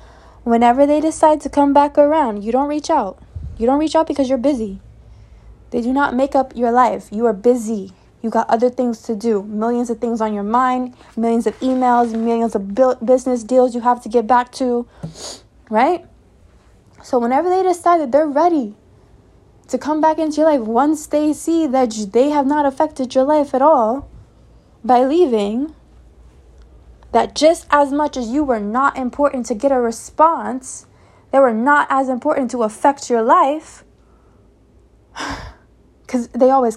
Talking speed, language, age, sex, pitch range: 175 wpm, English, 20-39, female, 225-285 Hz